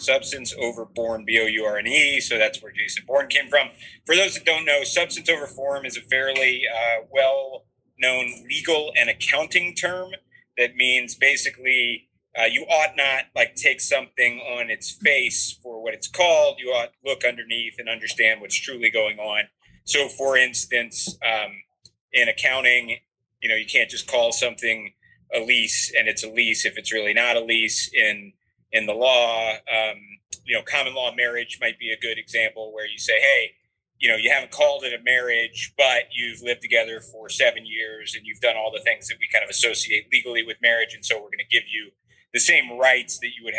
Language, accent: English, American